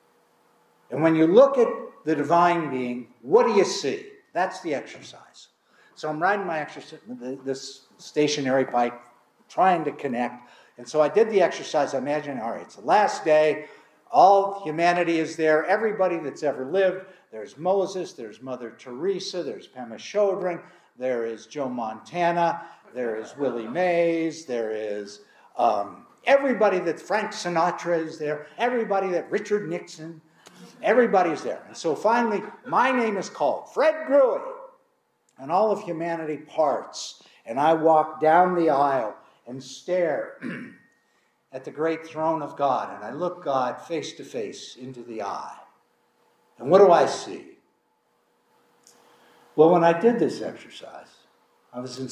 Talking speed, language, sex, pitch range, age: 150 wpm, English, male, 135-190 Hz, 60-79